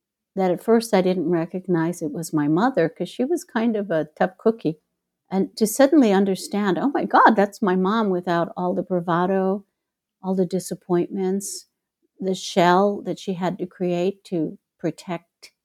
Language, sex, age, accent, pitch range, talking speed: English, female, 60-79, American, 180-225 Hz, 170 wpm